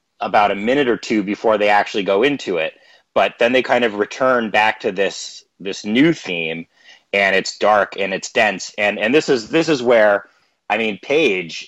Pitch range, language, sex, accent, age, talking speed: 100-115 Hz, English, male, American, 30-49, 200 wpm